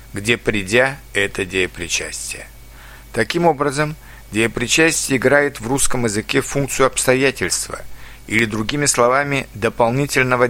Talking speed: 95 wpm